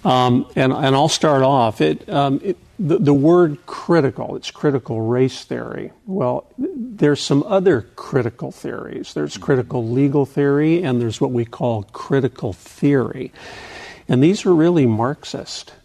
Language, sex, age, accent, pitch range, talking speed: English, male, 50-69, American, 120-145 Hz, 150 wpm